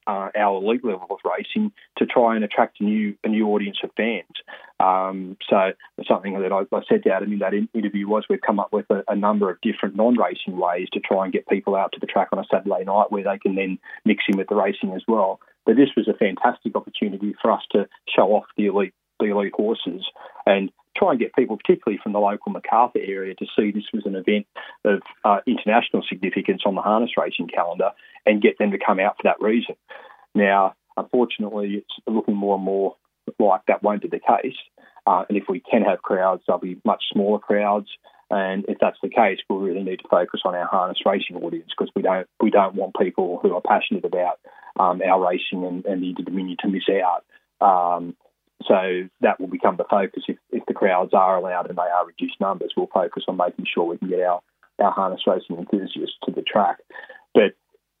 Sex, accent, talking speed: male, Australian, 220 wpm